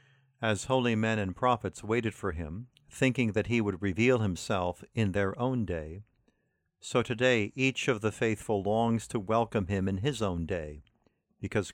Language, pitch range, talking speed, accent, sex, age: English, 100-125 Hz, 170 wpm, American, male, 50-69